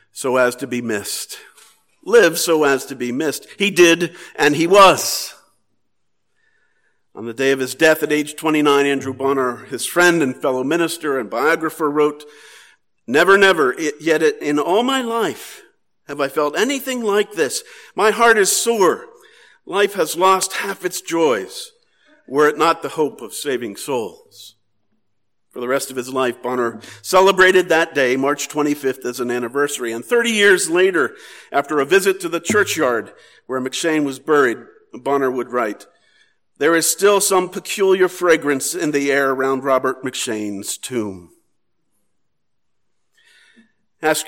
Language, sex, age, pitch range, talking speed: English, male, 50-69, 135-200 Hz, 150 wpm